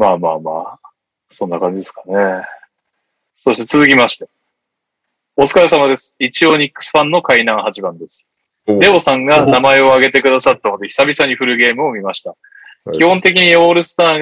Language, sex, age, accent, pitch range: Japanese, male, 20-39, native, 115-160 Hz